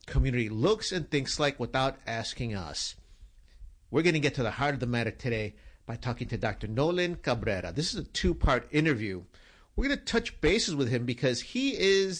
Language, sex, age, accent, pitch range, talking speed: English, male, 50-69, American, 110-145 Hz, 195 wpm